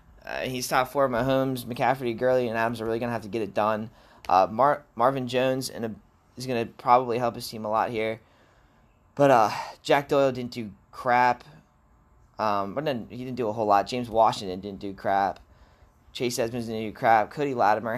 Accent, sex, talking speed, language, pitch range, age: American, male, 195 wpm, English, 110-130 Hz, 20-39